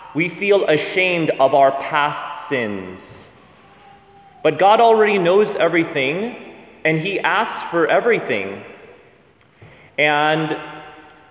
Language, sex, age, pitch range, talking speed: English, male, 30-49, 150-200 Hz, 95 wpm